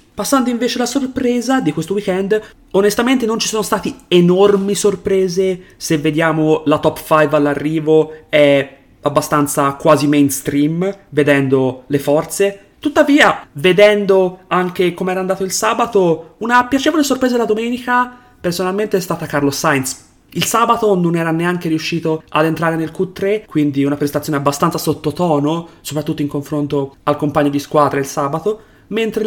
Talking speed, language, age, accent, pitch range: 145 wpm, Italian, 30-49, native, 150-195 Hz